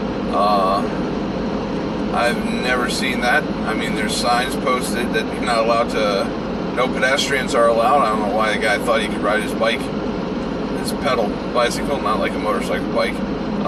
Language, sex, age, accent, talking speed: English, male, 30-49, American, 175 wpm